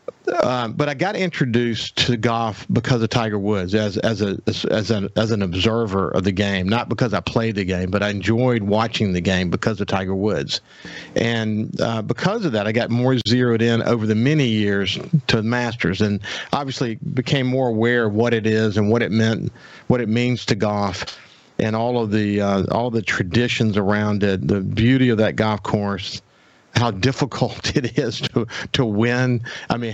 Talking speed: 200 wpm